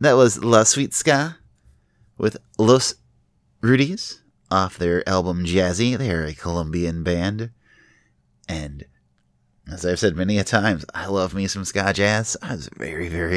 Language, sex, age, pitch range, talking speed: English, male, 30-49, 85-110 Hz, 150 wpm